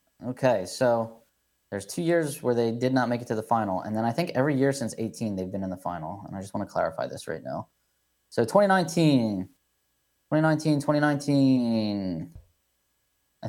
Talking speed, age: 180 wpm, 20-39